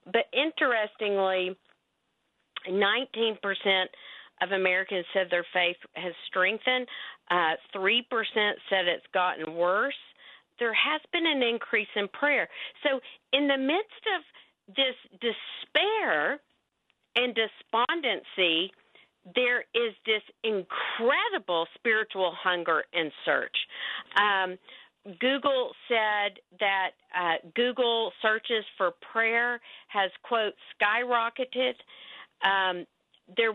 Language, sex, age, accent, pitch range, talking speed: English, female, 50-69, American, 190-245 Hz, 95 wpm